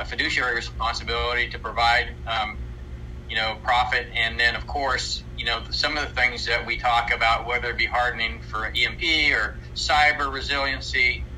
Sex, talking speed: male, 170 wpm